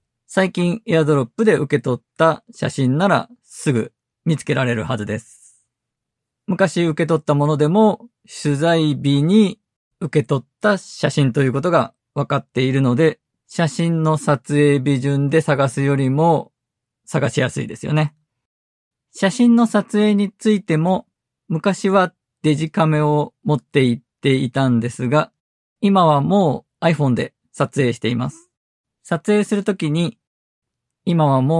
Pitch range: 130-170 Hz